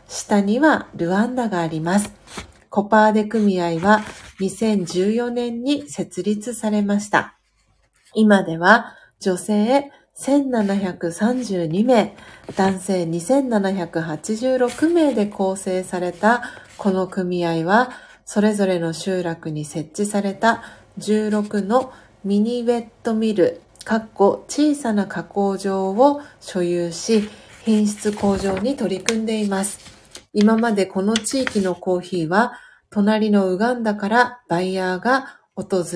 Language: Japanese